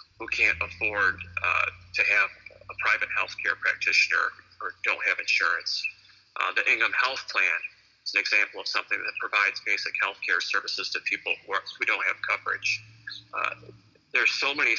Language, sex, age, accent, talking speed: English, male, 40-59, American, 170 wpm